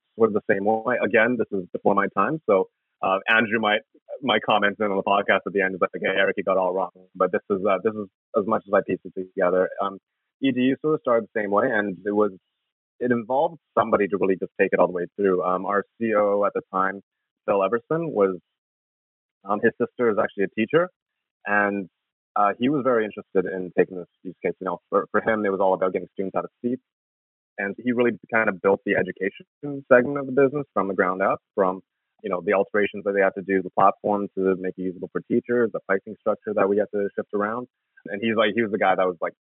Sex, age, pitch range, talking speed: male, 30-49, 95-110 Hz, 245 wpm